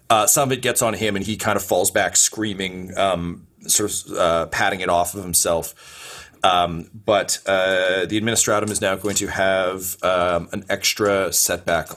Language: English